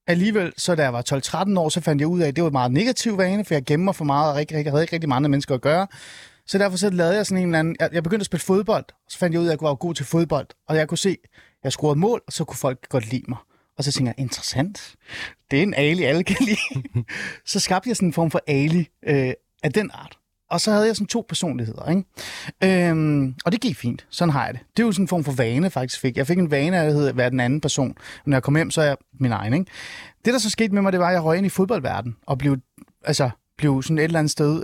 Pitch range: 135-175 Hz